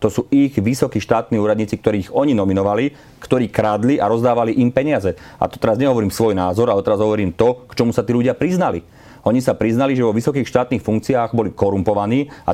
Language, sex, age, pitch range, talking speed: Slovak, male, 40-59, 105-120 Hz, 200 wpm